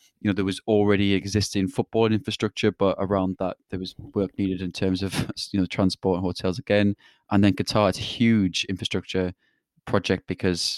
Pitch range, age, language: 90-100 Hz, 20-39, English